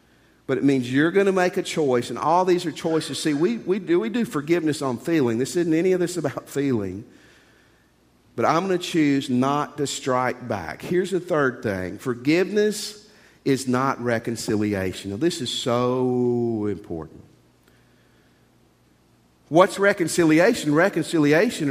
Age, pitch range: 50-69, 125-175 Hz